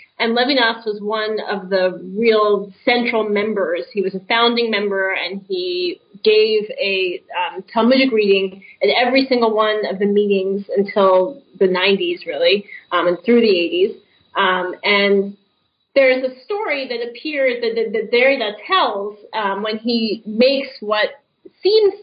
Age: 30-49